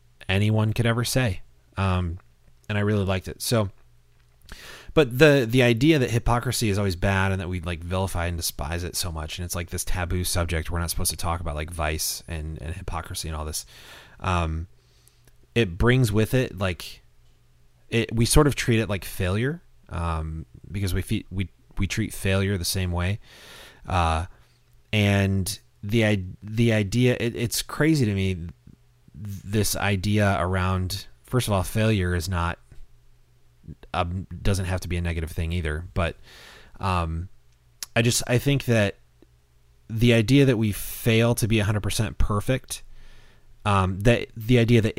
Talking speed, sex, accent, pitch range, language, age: 170 wpm, male, American, 85-110 Hz, English, 30-49